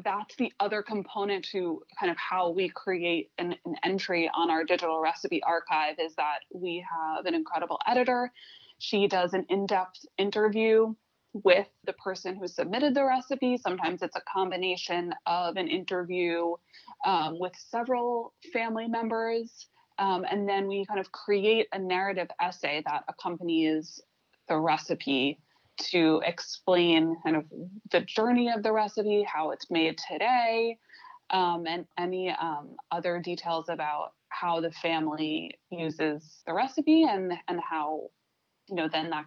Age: 20-39